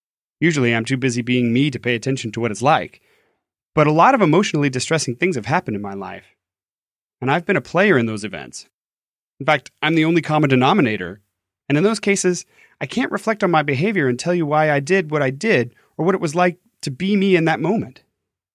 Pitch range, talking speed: 120-175 Hz, 225 wpm